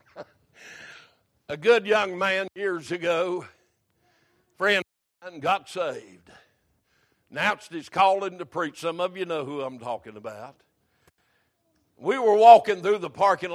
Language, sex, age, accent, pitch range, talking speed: English, male, 60-79, American, 175-210 Hz, 135 wpm